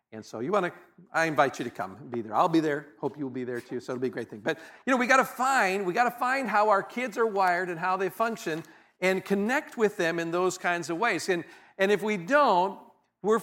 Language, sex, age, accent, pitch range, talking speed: English, male, 50-69, American, 155-205 Hz, 275 wpm